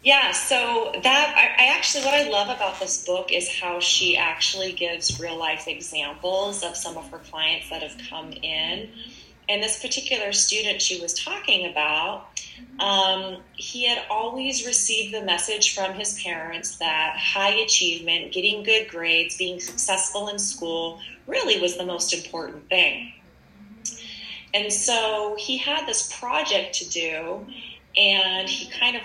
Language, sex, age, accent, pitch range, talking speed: English, female, 30-49, American, 175-220 Hz, 155 wpm